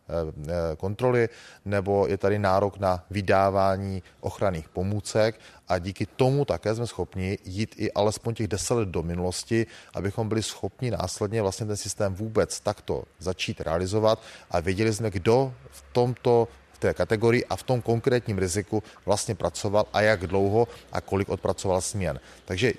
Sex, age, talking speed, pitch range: male, 30-49, 155 wpm, 95-115 Hz